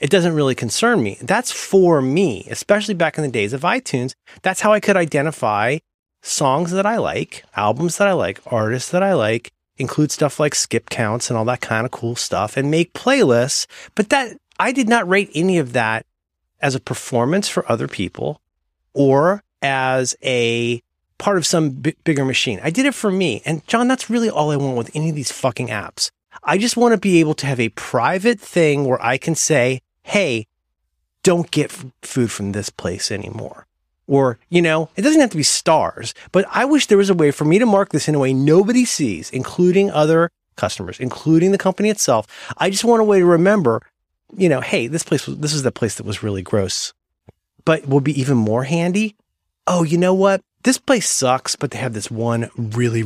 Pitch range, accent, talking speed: 120-185 Hz, American, 210 wpm